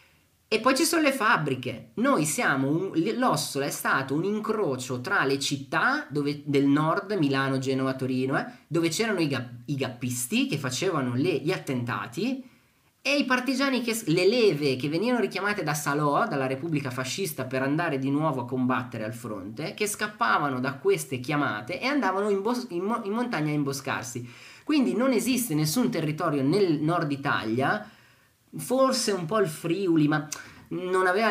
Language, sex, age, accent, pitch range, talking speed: Italian, male, 20-39, native, 135-200 Hz, 155 wpm